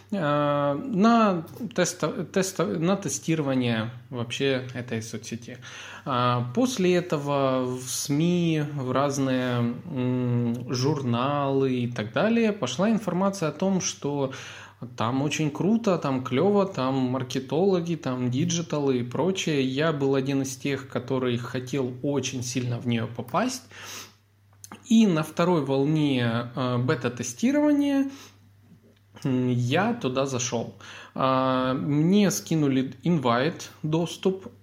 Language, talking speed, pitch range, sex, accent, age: Russian, 100 wpm, 125-165 Hz, male, native, 20-39